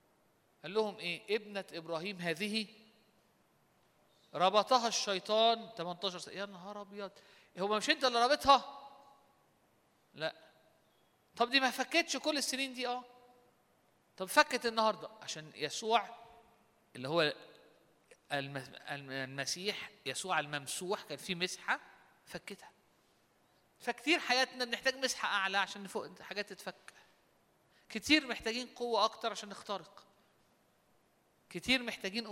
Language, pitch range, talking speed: Arabic, 170-245 Hz, 110 wpm